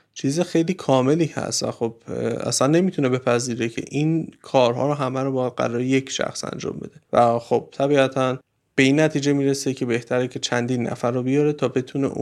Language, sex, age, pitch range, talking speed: Persian, male, 30-49, 125-160 Hz, 180 wpm